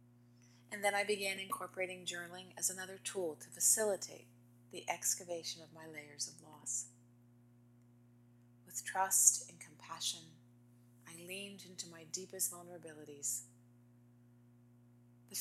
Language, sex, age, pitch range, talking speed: English, female, 40-59, 120-175 Hz, 115 wpm